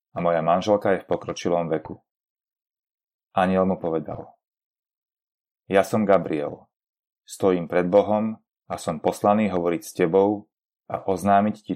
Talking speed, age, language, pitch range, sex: 130 wpm, 30-49, Slovak, 90-100 Hz, male